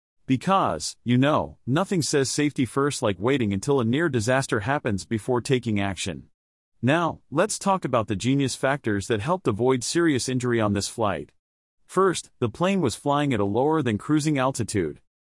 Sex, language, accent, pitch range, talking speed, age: male, English, American, 110-150 Hz, 170 wpm, 40-59